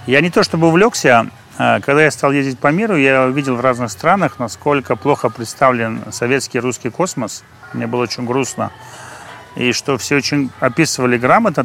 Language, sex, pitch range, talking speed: Russian, male, 120-145 Hz, 165 wpm